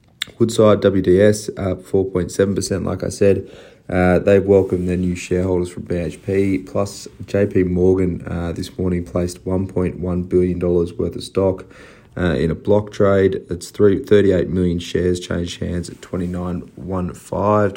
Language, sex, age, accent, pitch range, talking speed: English, male, 30-49, Australian, 90-95 Hz, 140 wpm